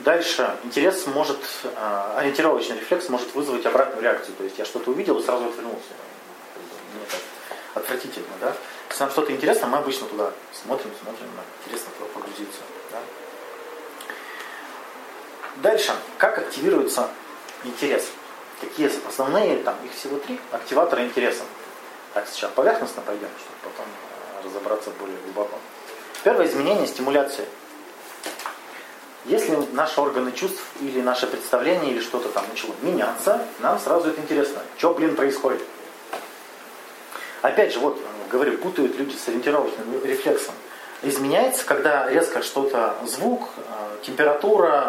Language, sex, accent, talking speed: Russian, male, native, 125 wpm